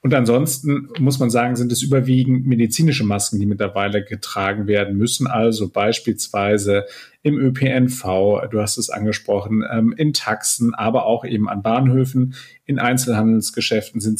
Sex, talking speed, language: male, 140 wpm, German